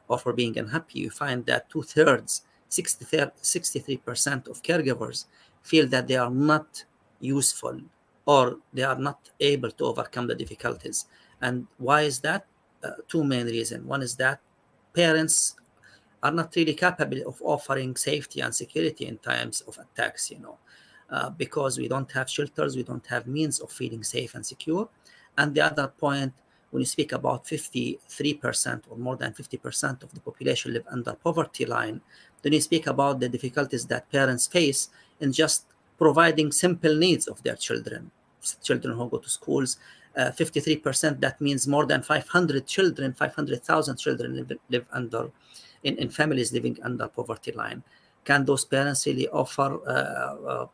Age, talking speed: 40-59, 165 wpm